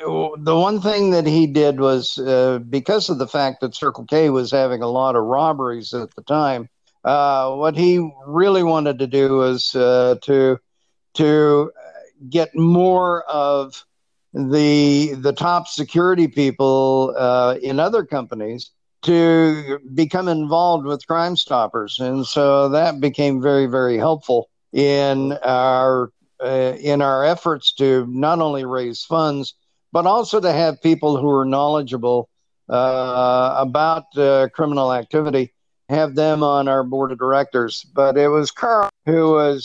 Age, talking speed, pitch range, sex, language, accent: 60-79, 145 wpm, 130-155 Hz, male, English, American